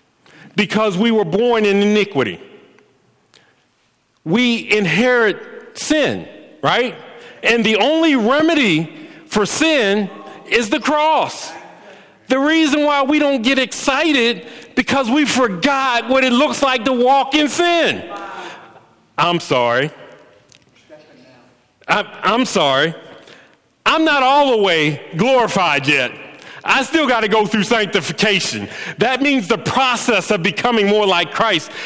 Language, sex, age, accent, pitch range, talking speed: English, male, 40-59, American, 190-275 Hz, 120 wpm